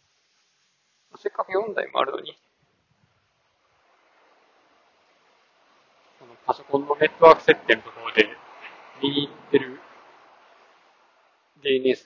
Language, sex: Japanese, male